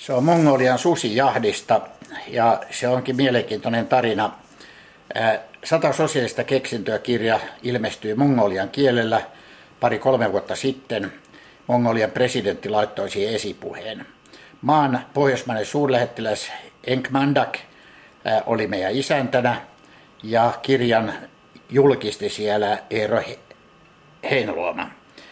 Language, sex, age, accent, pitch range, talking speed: Finnish, male, 60-79, native, 115-145 Hz, 95 wpm